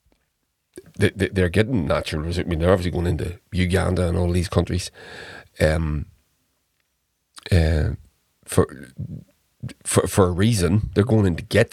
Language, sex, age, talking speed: English, male, 40-59, 140 wpm